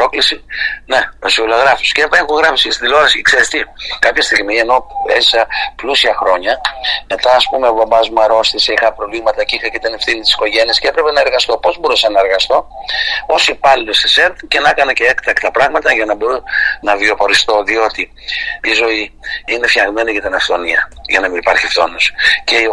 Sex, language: male, Greek